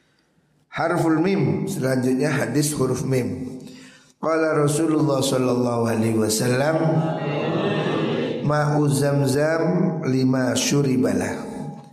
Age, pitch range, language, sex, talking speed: 60-79, 125-155 Hz, Indonesian, male, 70 wpm